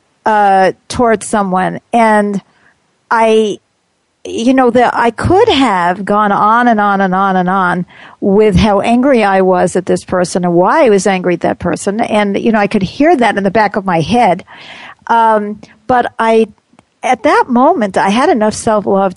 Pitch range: 195-230 Hz